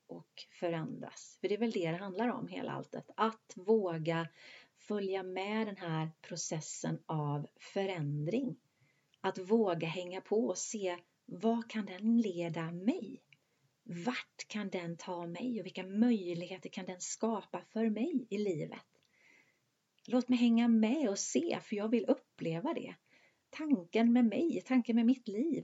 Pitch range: 175-230 Hz